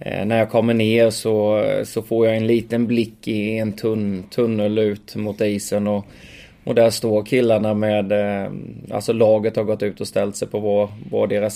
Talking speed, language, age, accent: 185 wpm, English, 20-39, Swedish